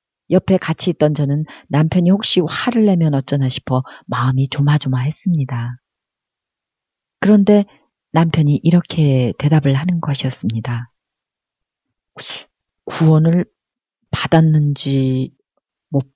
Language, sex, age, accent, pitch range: Korean, female, 40-59, native, 135-180 Hz